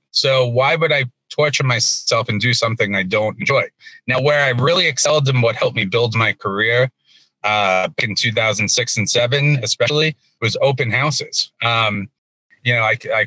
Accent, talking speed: American, 170 wpm